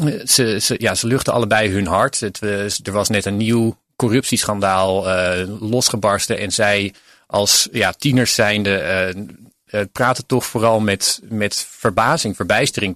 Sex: male